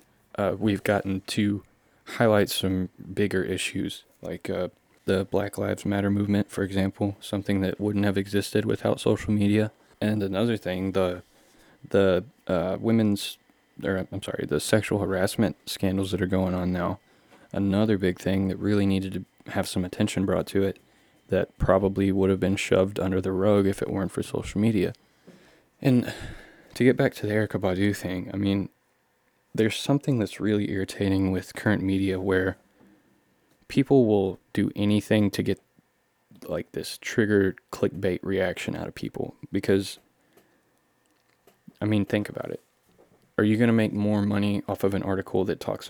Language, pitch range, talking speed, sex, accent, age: English, 95-105 Hz, 165 wpm, male, American, 20-39